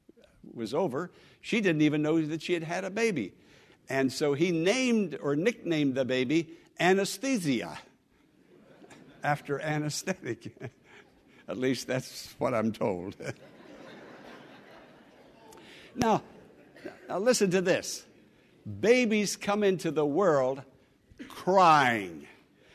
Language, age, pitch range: English, 60-79, 140-220 Hz